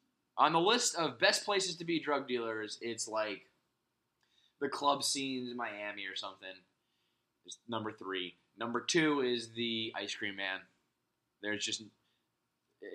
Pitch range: 105-145 Hz